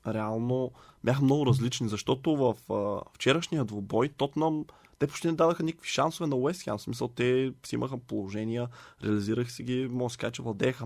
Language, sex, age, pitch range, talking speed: Bulgarian, male, 20-39, 110-130 Hz, 170 wpm